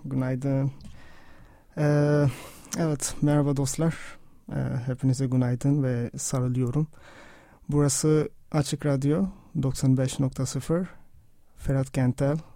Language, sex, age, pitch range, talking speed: Turkish, male, 30-49, 130-150 Hz, 70 wpm